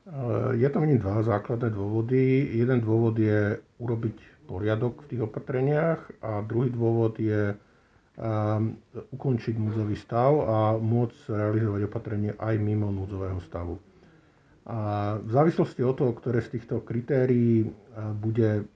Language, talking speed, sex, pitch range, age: Slovak, 125 wpm, male, 105-120 Hz, 50-69